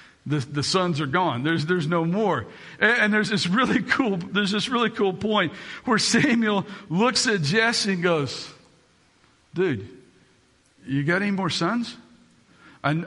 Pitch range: 155-220 Hz